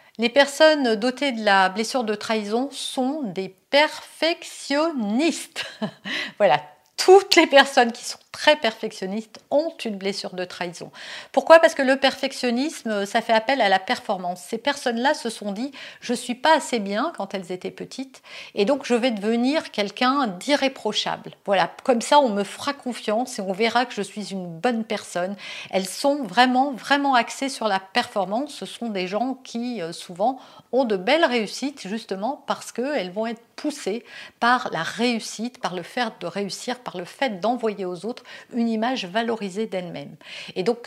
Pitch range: 190-255 Hz